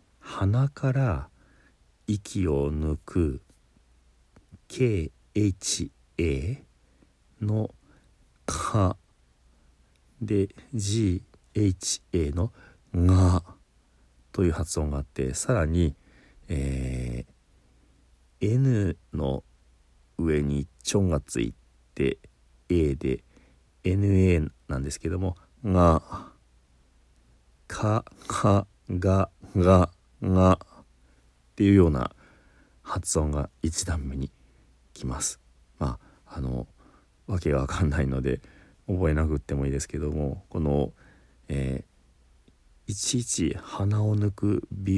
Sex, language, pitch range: male, Japanese, 65-95 Hz